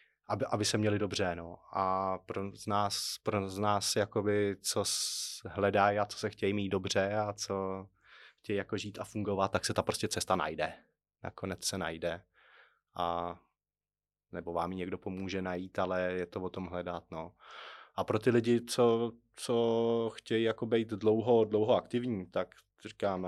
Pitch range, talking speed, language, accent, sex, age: 100-115 Hz, 170 wpm, Czech, native, male, 20-39